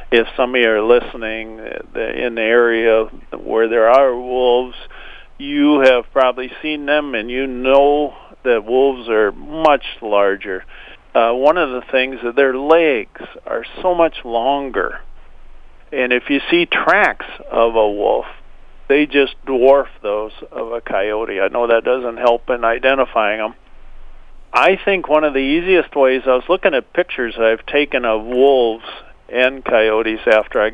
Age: 50-69